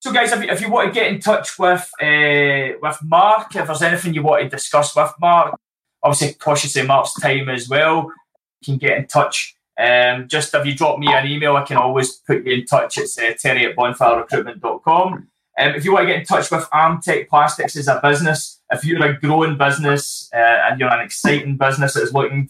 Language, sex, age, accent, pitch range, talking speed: English, male, 20-39, British, 130-165 Hz, 215 wpm